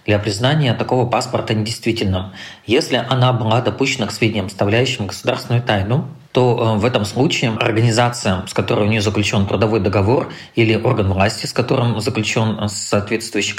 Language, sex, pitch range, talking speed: Russian, male, 100-120 Hz, 145 wpm